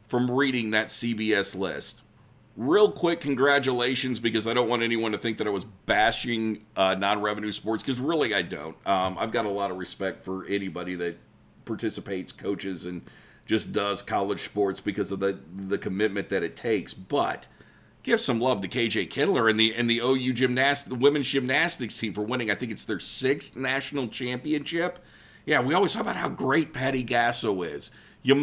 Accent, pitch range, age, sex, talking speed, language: American, 100-130 Hz, 50-69, male, 185 wpm, English